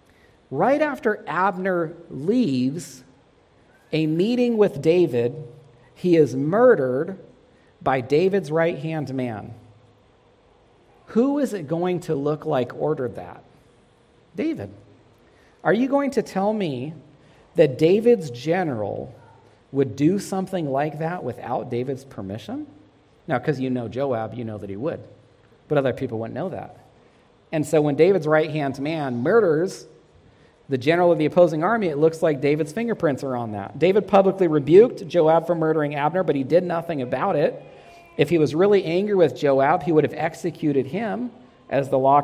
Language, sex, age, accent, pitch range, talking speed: English, male, 40-59, American, 130-175 Hz, 150 wpm